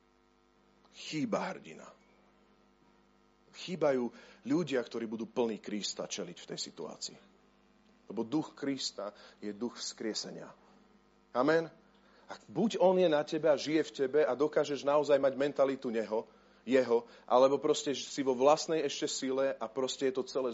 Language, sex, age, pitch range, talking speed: Slovak, male, 40-59, 120-160 Hz, 140 wpm